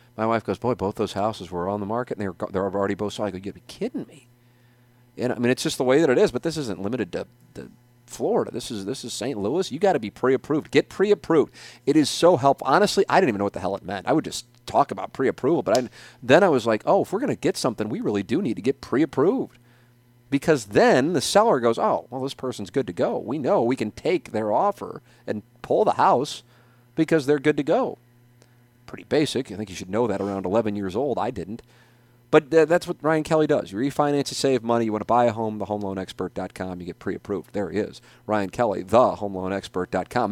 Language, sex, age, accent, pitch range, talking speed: English, male, 40-59, American, 100-130 Hz, 245 wpm